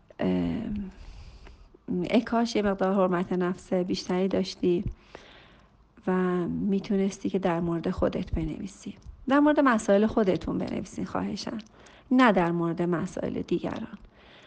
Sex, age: female, 40-59